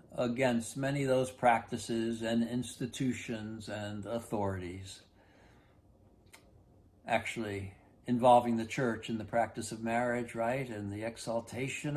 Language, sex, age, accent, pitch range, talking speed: English, male, 60-79, American, 100-125 Hz, 110 wpm